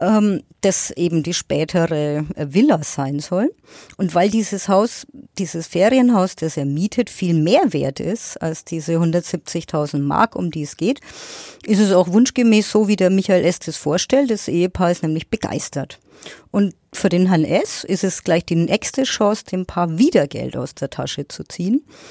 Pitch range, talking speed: 165-210 Hz, 175 wpm